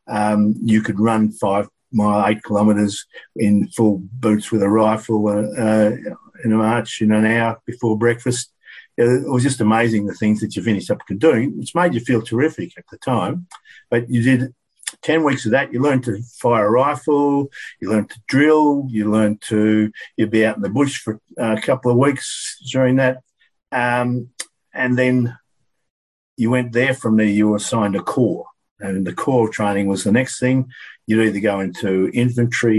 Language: English